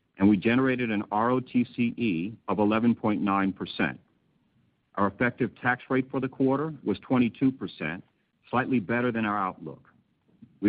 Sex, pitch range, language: male, 100-125 Hz, English